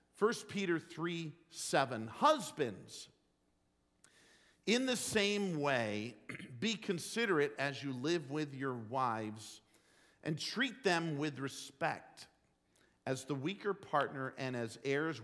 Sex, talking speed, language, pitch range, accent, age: male, 115 wpm, English, 125-180 Hz, American, 50-69